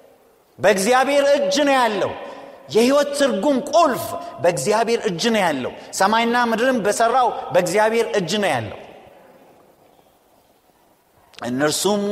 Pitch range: 205-285 Hz